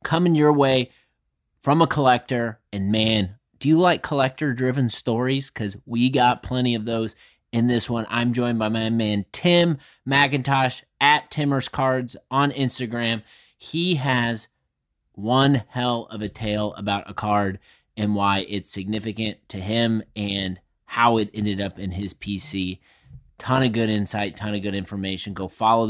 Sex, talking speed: male, 160 wpm